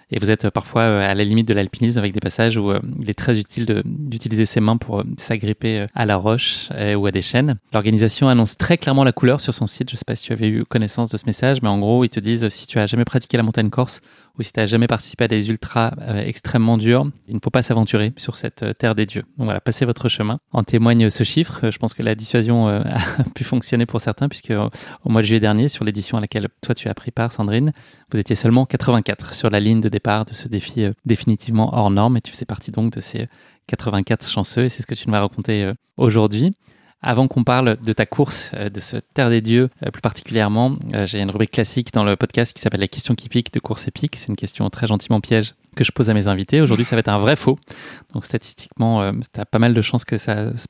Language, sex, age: French, male, 20-39